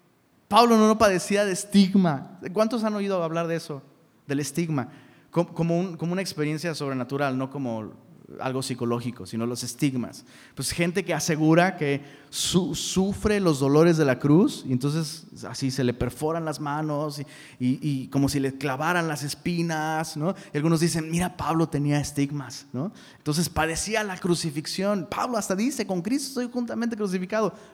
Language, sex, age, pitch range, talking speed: Spanish, male, 30-49, 135-180 Hz, 165 wpm